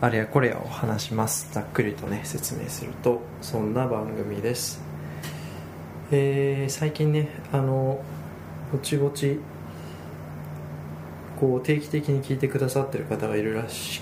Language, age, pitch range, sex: Japanese, 20-39, 80-130 Hz, male